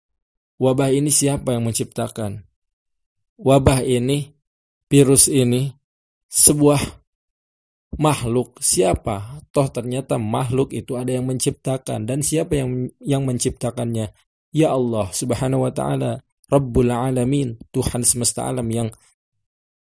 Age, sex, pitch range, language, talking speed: 20-39, male, 110-135 Hz, Indonesian, 105 wpm